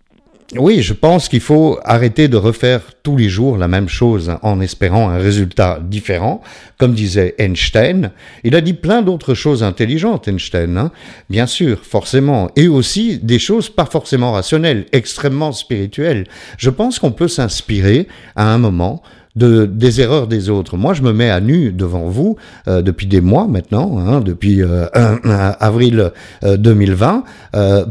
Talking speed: 170 wpm